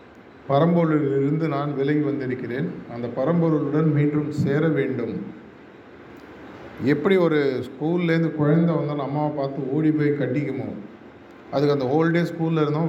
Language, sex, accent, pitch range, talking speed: Tamil, male, native, 140-160 Hz, 110 wpm